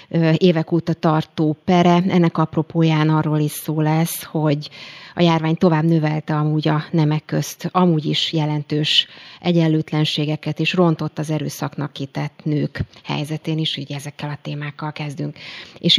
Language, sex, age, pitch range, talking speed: Hungarian, female, 30-49, 150-170 Hz, 140 wpm